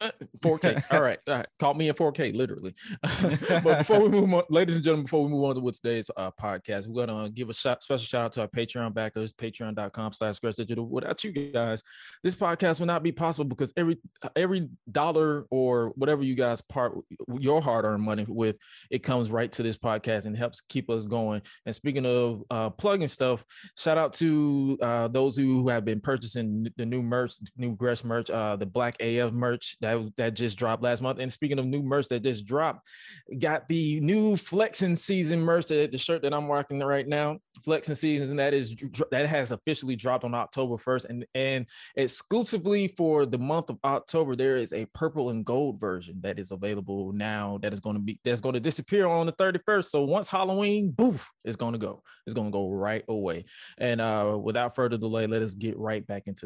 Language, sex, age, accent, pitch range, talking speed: English, male, 20-39, American, 115-150 Hz, 215 wpm